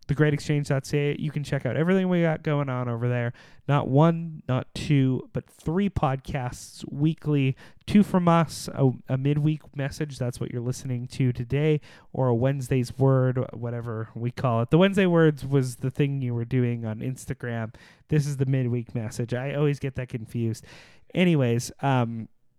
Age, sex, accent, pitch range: 30-49, male, American, 125-155 Hz